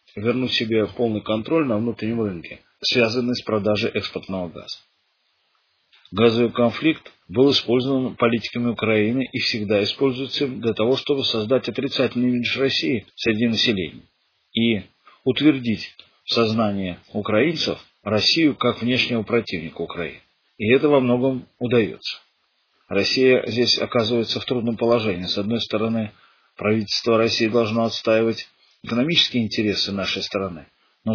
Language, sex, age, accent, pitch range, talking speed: Russian, male, 40-59, native, 105-125 Hz, 125 wpm